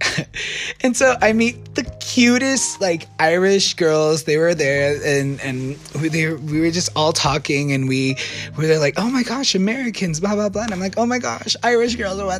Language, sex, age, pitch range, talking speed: English, male, 20-39, 130-170 Hz, 210 wpm